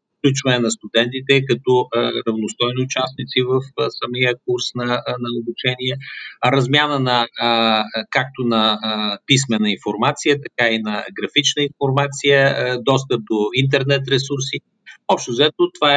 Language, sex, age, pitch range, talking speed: Bulgarian, male, 50-69, 120-145 Hz, 135 wpm